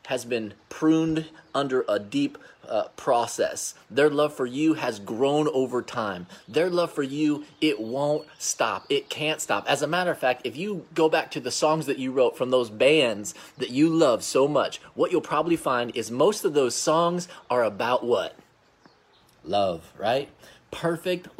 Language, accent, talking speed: English, American, 180 wpm